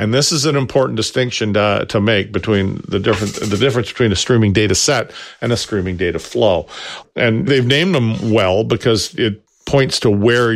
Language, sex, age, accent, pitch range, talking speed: English, male, 50-69, American, 95-125 Hz, 195 wpm